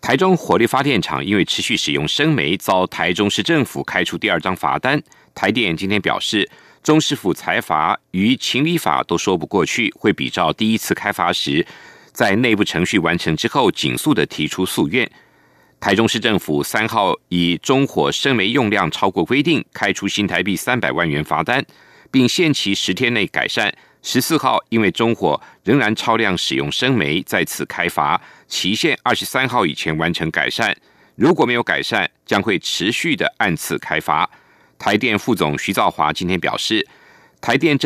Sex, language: male, German